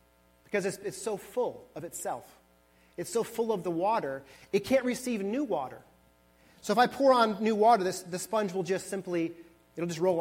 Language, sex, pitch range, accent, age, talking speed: English, male, 145-225 Hz, American, 30-49, 195 wpm